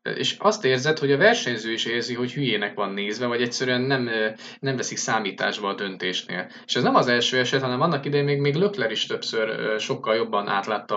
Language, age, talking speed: Hungarian, 20-39, 200 wpm